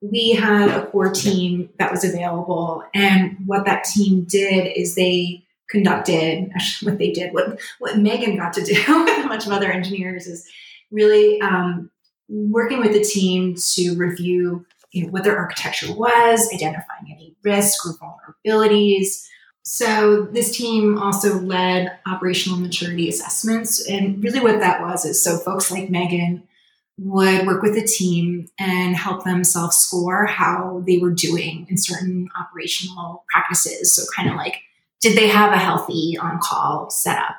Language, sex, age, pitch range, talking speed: English, female, 20-39, 180-210 Hz, 155 wpm